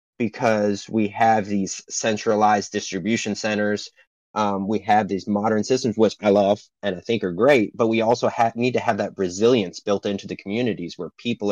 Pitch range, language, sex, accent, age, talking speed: 95-110 Hz, English, male, American, 30-49, 180 wpm